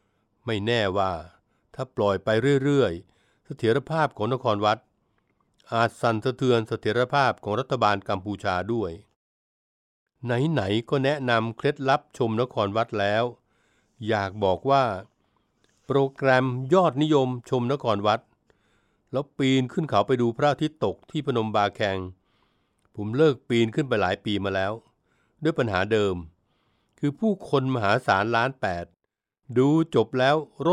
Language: Thai